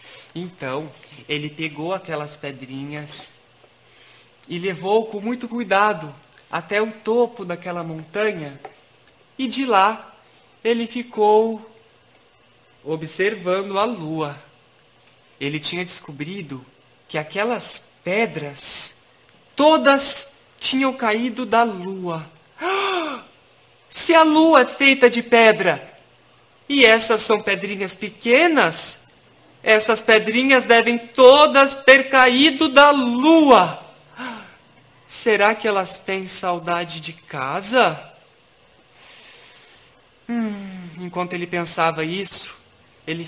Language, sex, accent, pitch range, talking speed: Portuguese, male, Brazilian, 155-225 Hz, 95 wpm